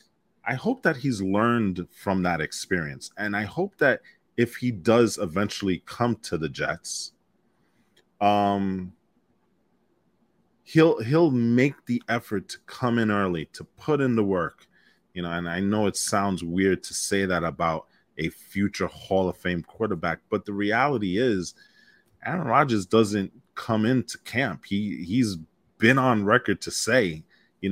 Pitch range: 95-120 Hz